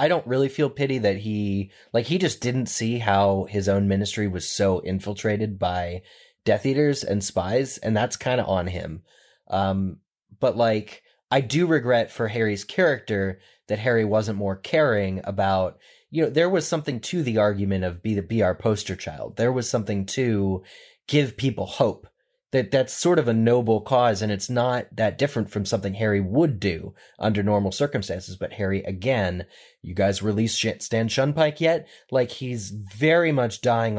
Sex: male